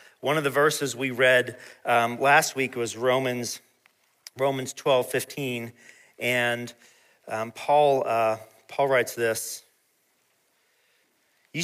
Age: 40-59